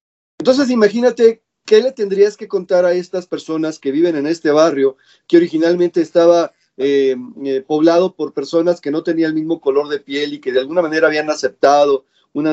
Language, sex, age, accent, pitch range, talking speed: Spanish, male, 40-59, Mexican, 155-205 Hz, 180 wpm